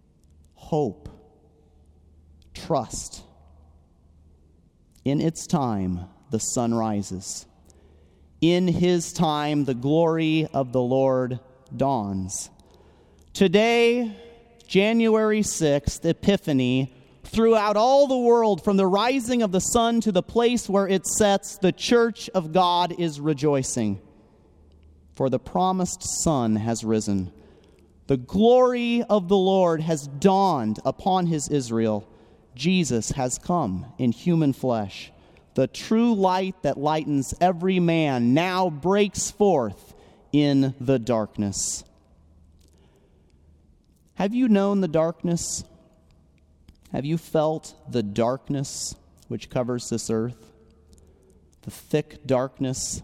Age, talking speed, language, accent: 30-49, 105 wpm, English, American